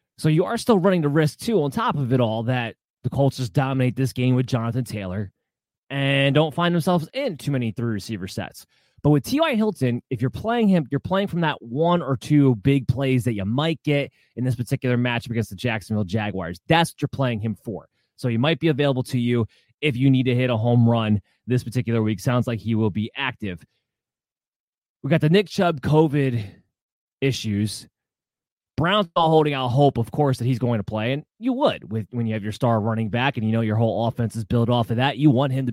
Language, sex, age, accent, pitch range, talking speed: English, male, 20-39, American, 115-145 Hz, 230 wpm